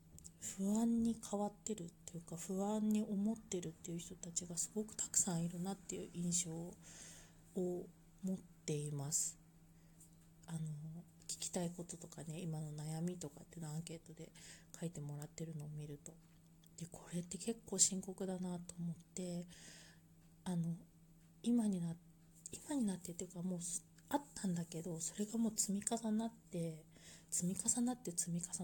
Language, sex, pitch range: Japanese, female, 165-195 Hz